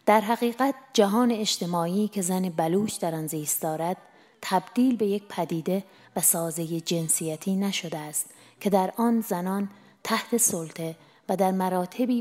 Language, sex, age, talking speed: Persian, female, 30-49, 145 wpm